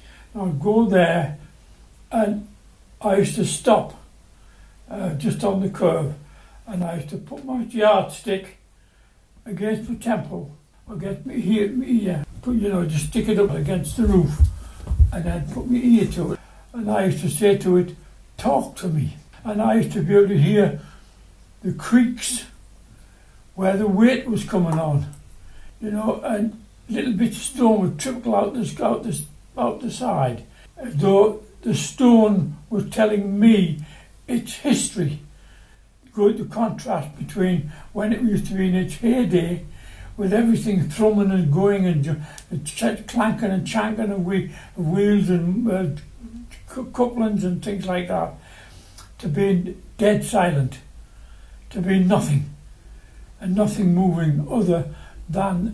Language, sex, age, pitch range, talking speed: English, male, 60-79, 165-215 Hz, 150 wpm